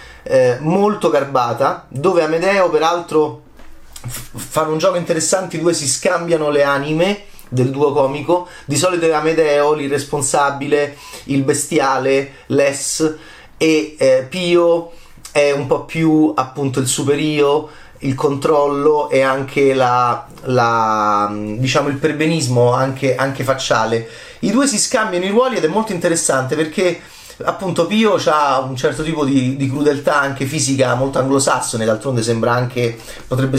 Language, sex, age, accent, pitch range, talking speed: Italian, male, 30-49, native, 135-165 Hz, 140 wpm